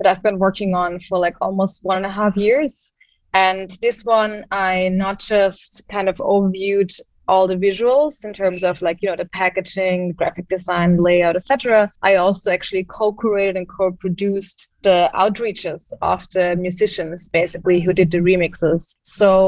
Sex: female